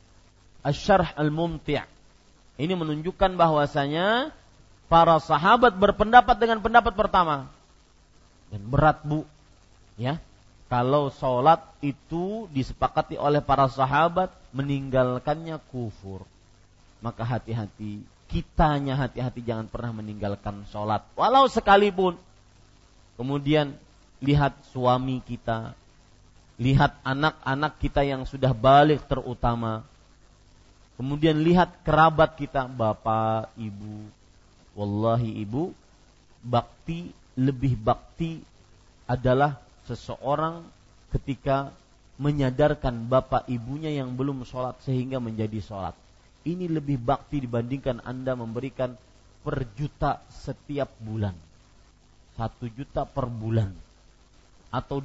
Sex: male